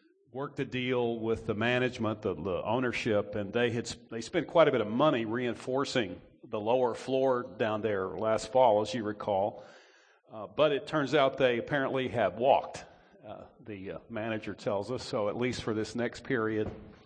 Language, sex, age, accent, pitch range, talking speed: English, male, 50-69, American, 115-150 Hz, 180 wpm